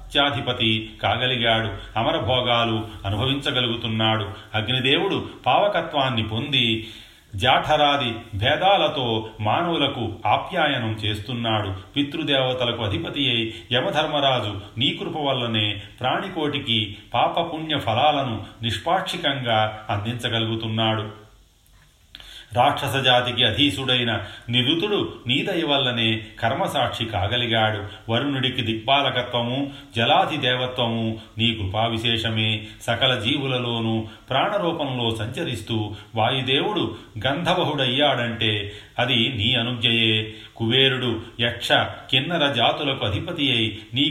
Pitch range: 110-135 Hz